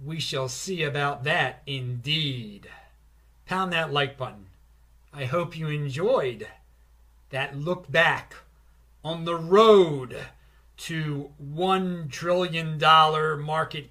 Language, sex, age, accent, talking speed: English, male, 40-59, American, 105 wpm